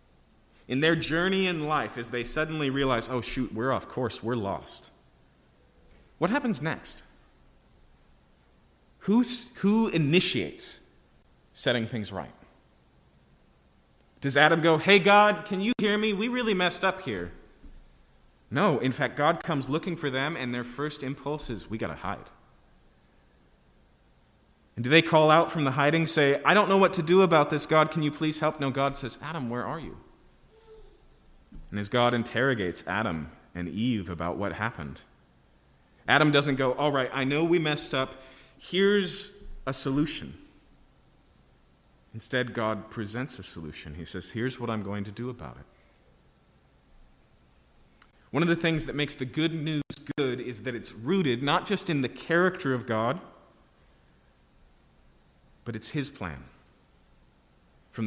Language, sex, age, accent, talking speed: English, male, 30-49, American, 155 wpm